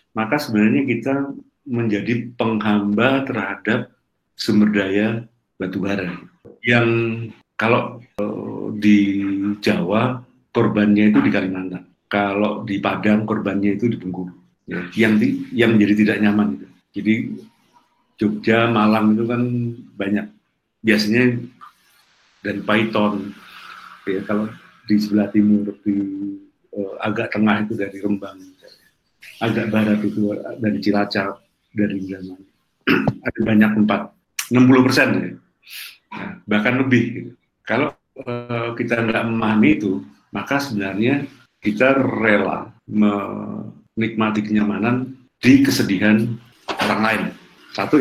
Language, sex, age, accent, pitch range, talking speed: Indonesian, male, 50-69, native, 105-120 Hz, 105 wpm